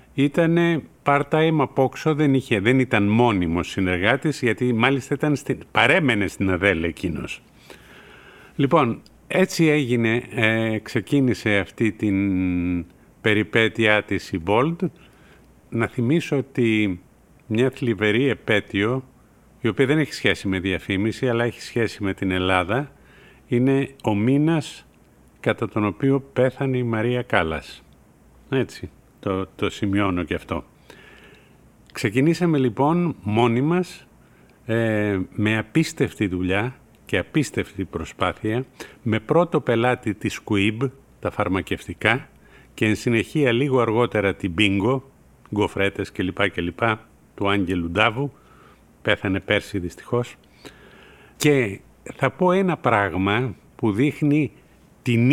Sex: male